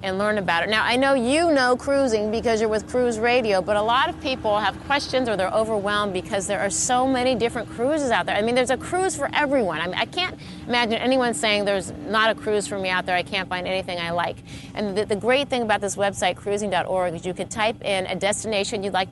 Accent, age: American, 30-49